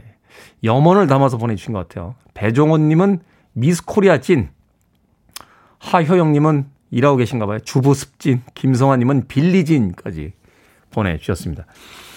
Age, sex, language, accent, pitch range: 40-59, male, Korean, native, 120-200 Hz